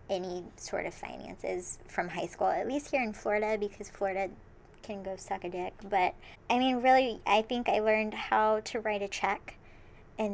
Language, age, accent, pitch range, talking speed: English, 20-39, American, 195-240 Hz, 190 wpm